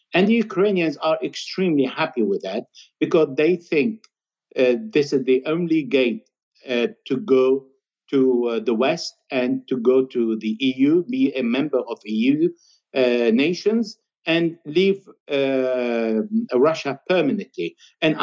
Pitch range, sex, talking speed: 135-195 Hz, male, 140 wpm